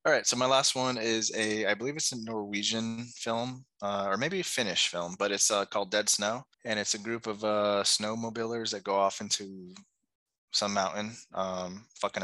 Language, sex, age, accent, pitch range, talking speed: English, male, 20-39, American, 95-115 Hz, 200 wpm